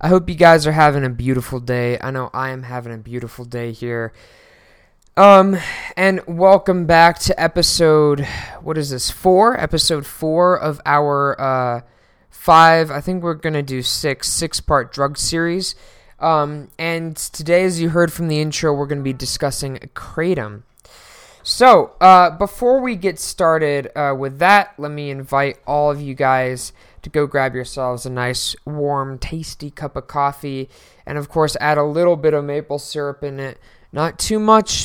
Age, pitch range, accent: 20-39, 135-170 Hz, American